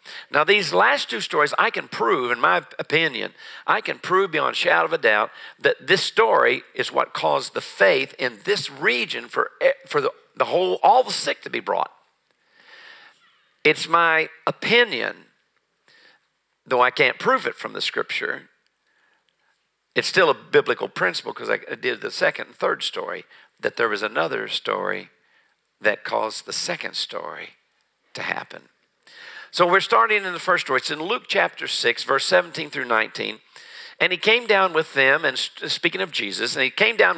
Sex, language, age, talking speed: male, English, 50-69, 175 wpm